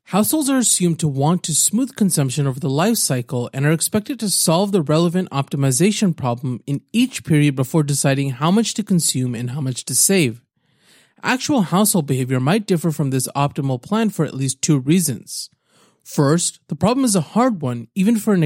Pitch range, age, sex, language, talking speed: 135-200 Hz, 30-49, male, English, 190 wpm